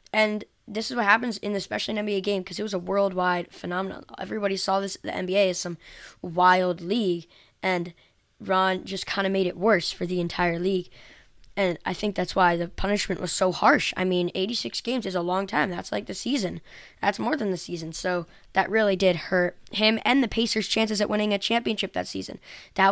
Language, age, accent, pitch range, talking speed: English, 20-39, American, 180-210 Hz, 210 wpm